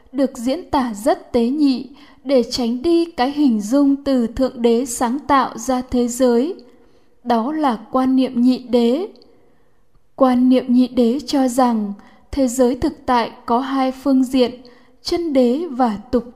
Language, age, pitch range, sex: Vietnamese, 10-29, 245-280 Hz, female